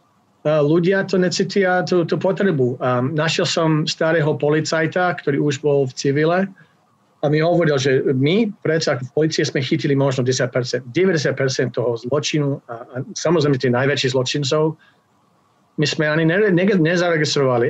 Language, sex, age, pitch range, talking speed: Slovak, male, 40-59, 135-165 Hz, 140 wpm